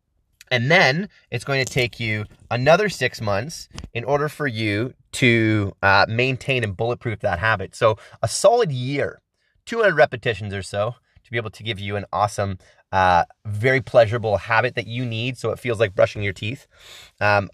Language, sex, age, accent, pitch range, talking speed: English, male, 30-49, American, 105-140 Hz, 180 wpm